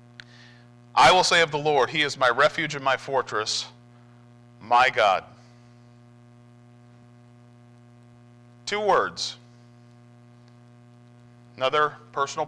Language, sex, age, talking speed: English, male, 40-59, 90 wpm